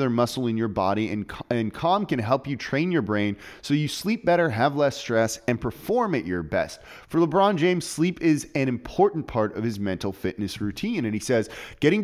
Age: 30-49